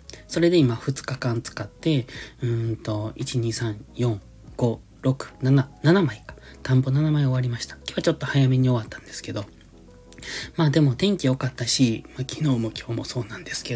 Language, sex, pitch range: Japanese, male, 110-140 Hz